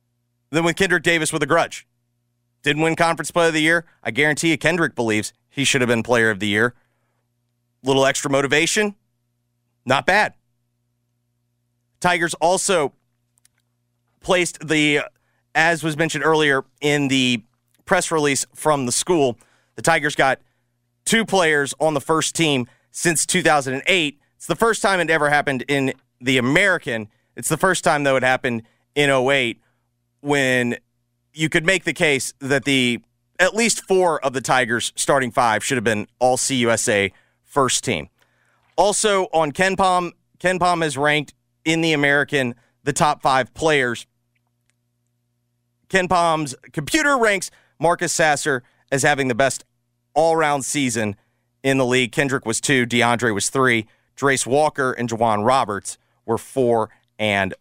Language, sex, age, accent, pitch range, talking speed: English, male, 30-49, American, 120-160 Hz, 150 wpm